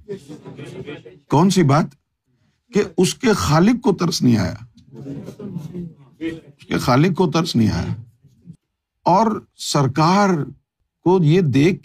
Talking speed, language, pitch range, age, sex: 115 wpm, Urdu, 115-155 Hz, 50-69, male